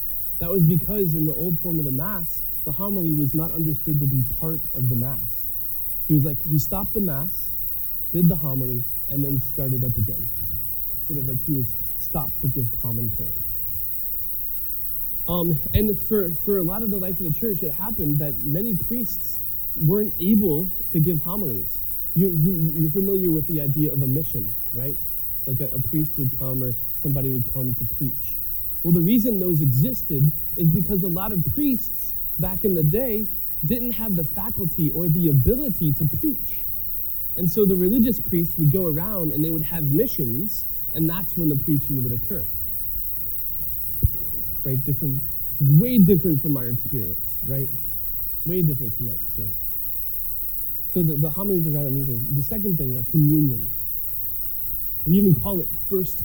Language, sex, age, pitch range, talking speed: English, male, 20-39, 115-170 Hz, 175 wpm